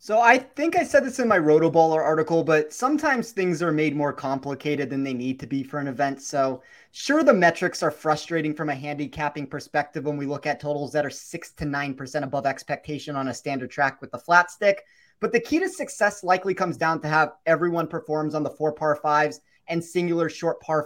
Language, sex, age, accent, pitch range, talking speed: English, male, 30-49, American, 155-200 Hz, 220 wpm